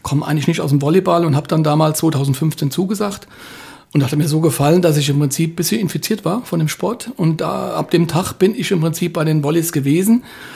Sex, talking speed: male, 240 wpm